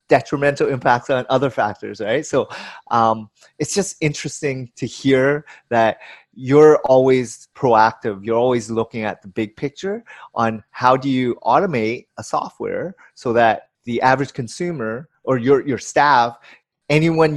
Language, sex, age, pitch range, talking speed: English, male, 30-49, 115-145 Hz, 140 wpm